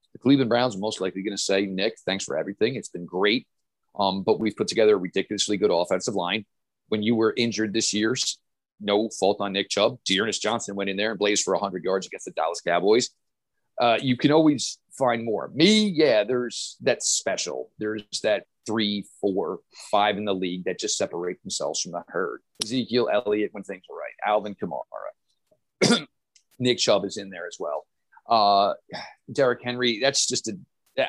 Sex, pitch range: male, 100-125 Hz